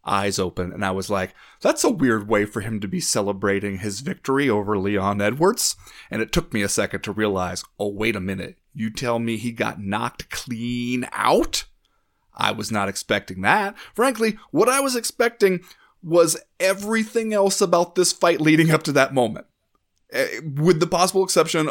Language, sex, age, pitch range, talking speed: English, male, 30-49, 105-145 Hz, 180 wpm